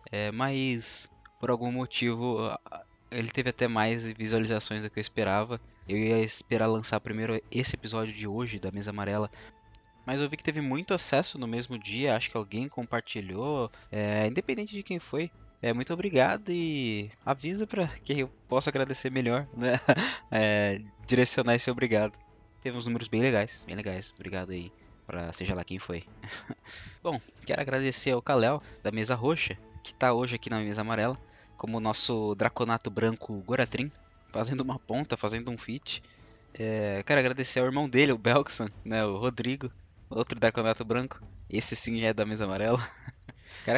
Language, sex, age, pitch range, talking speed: Portuguese, male, 20-39, 105-130 Hz, 170 wpm